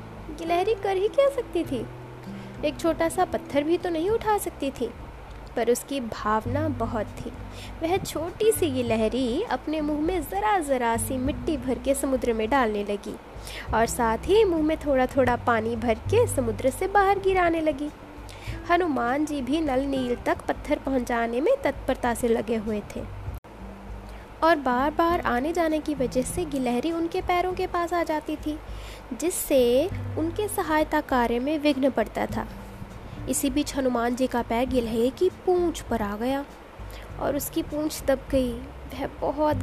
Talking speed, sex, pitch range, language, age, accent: 130 wpm, female, 240-330 Hz, English, 20-39, Indian